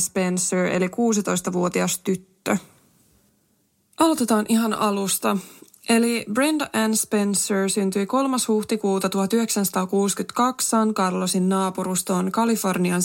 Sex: female